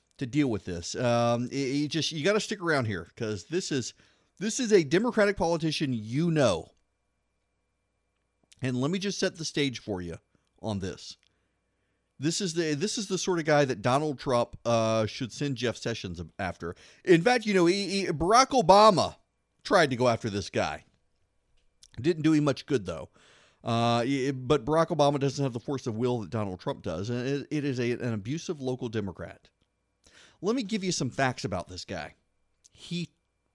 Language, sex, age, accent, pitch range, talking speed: English, male, 40-59, American, 105-165 Hz, 190 wpm